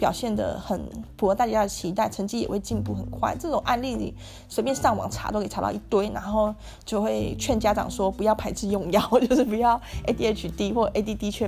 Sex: female